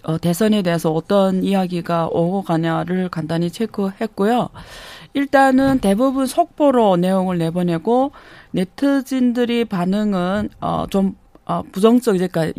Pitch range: 175-210 Hz